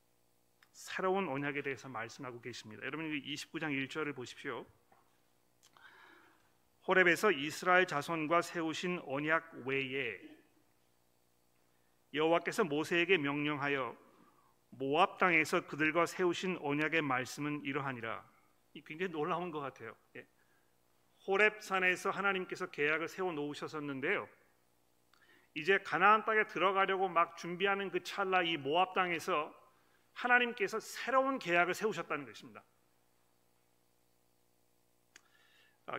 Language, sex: Korean, male